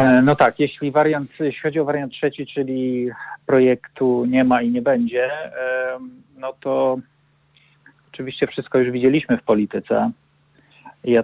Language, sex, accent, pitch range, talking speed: Polish, male, native, 115-135 Hz, 135 wpm